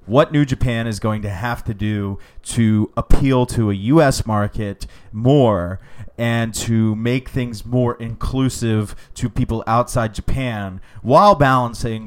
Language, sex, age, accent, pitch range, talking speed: English, male, 30-49, American, 105-125 Hz, 140 wpm